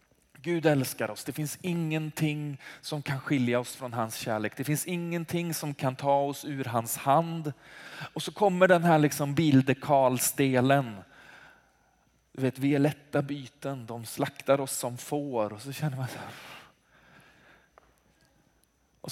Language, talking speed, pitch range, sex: Swedish, 145 wpm, 135-160 Hz, male